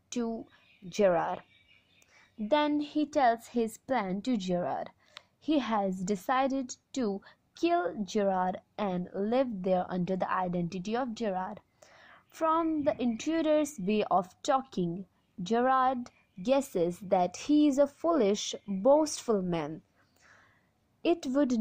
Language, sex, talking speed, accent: English, female, 110 wpm, Indian